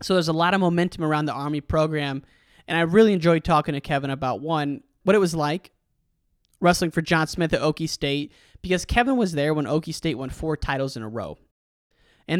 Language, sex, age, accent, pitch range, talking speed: English, male, 20-39, American, 145-180 Hz, 215 wpm